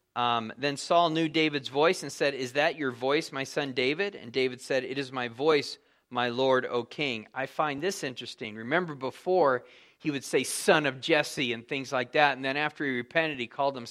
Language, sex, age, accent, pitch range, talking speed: English, male, 40-59, American, 130-165 Hz, 215 wpm